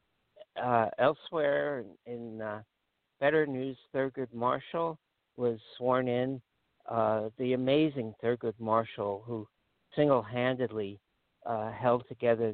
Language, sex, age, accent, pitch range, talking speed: English, male, 60-79, American, 110-125 Hz, 100 wpm